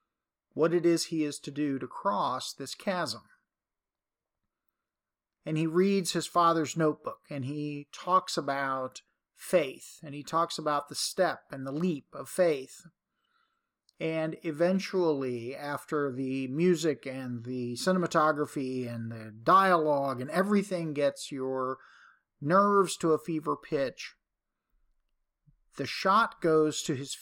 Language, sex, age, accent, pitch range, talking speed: English, male, 50-69, American, 140-180 Hz, 130 wpm